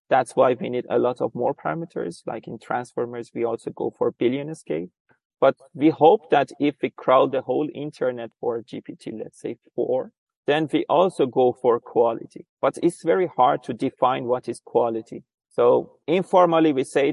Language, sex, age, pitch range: English, male, 30-49, 125-155 Hz